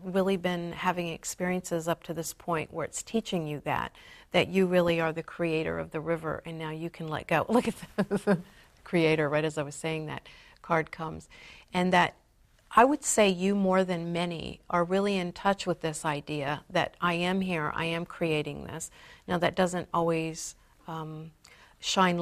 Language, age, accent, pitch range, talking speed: English, 50-69, American, 160-180 Hz, 190 wpm